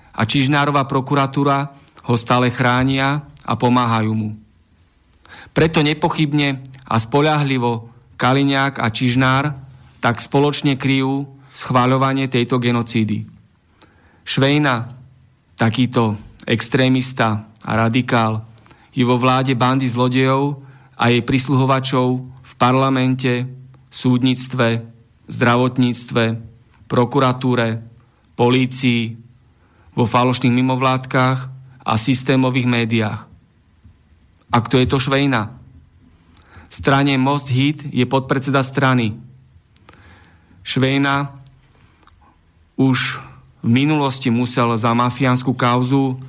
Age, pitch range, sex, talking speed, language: 40-59, 115-135 Hz, male, 85 wpm, Slovak